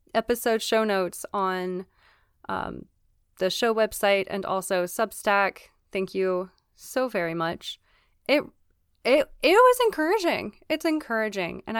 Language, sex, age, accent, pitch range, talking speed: English, female, 20-39, American, 185-235 Hz, 120 wpm